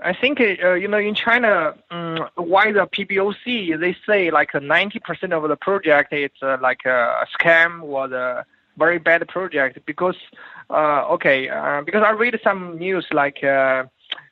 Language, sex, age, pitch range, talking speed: English, male, 20-39, 150-210 Hz, 165 wpm